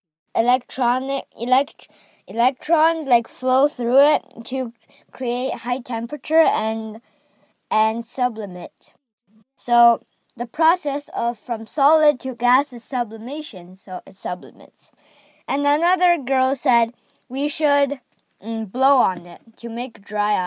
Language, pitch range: Chinese, 230-290 Hz